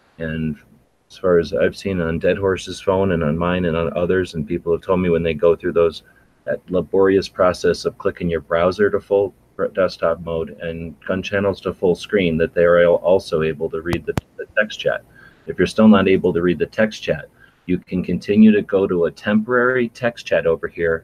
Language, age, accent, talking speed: English, 30-49, American, 210 wpm